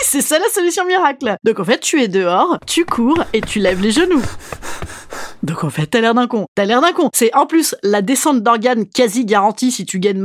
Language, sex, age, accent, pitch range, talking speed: French, female, 30-49, French, 200-310 Hz, 235 wpm